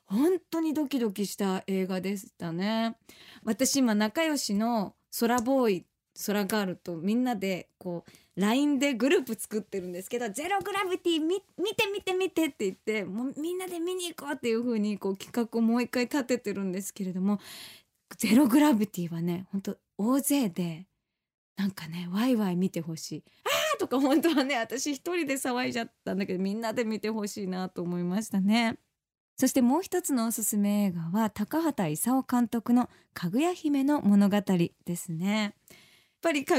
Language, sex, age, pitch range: Japanese, female, 20-39, 200-290 Hz